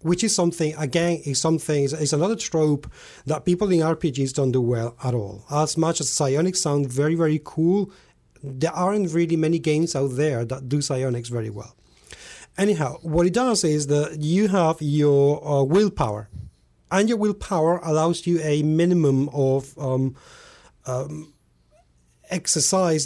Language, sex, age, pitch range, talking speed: English, male, 40-59, 130-165 Hz, 155 wpm